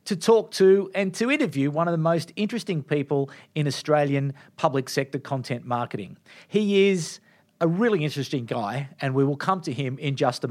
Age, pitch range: 40-59, 145-205 Hz